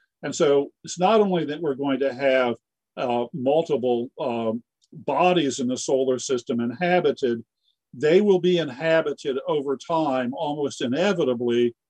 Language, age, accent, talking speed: English, 50-69, American, 135 wpm